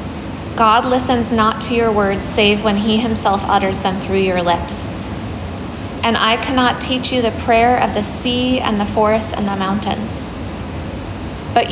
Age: 20-39